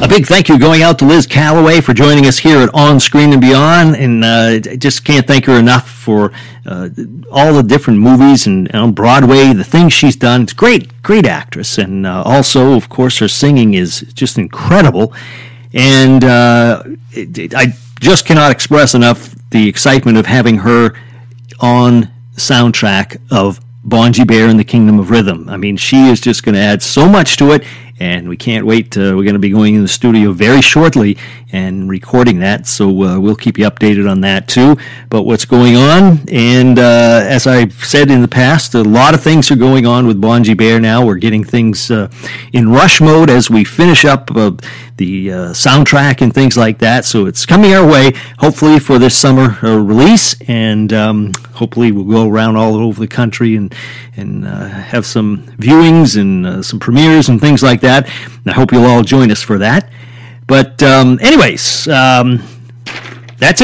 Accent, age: American, 50-69